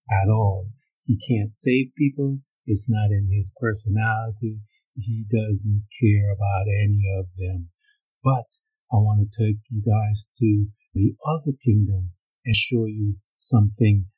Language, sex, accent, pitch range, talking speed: English, male, American, 100-120 Hz, 140 wpm